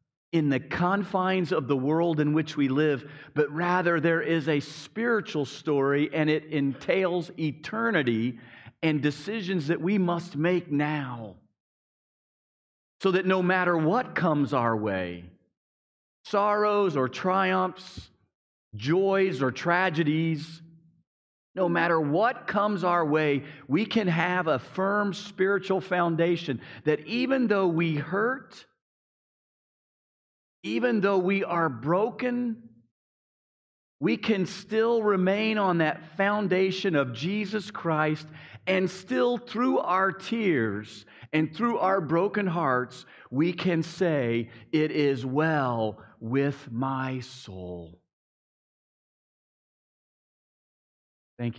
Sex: male